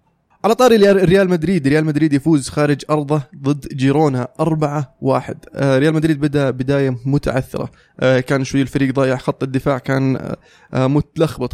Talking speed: 130 wpm